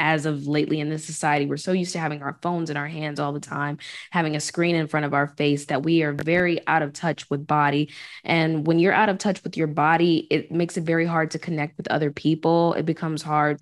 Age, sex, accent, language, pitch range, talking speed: 20-39, female, American, English, 150-170 Hz, 255 wpm